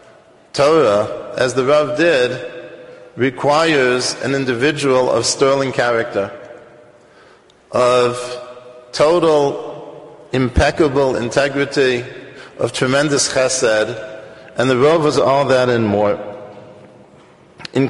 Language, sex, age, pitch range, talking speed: English, male, 40-59, 120-145 Hz, 90 wpm